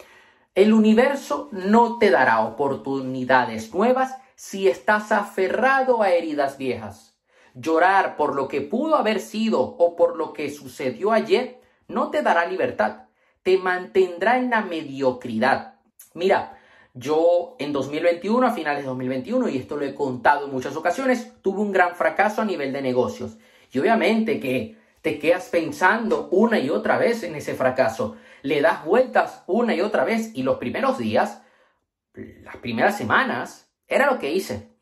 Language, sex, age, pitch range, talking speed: Spanish, male, 30-49, 135-225 Hz, 155 wpm